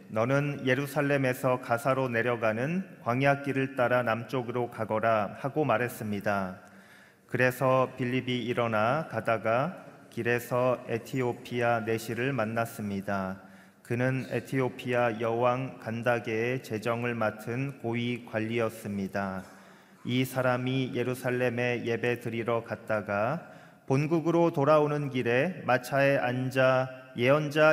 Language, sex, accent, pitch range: Korean, male, native, 115-140 Hz